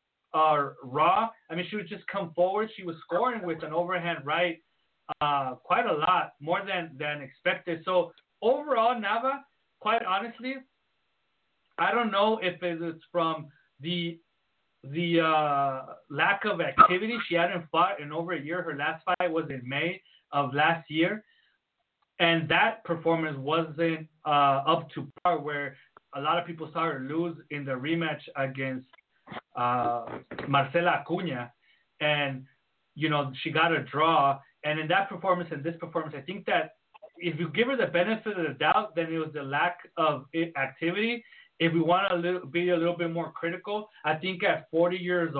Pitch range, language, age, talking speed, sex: 155-180 Hz, English, 30-49, 170 wpm, male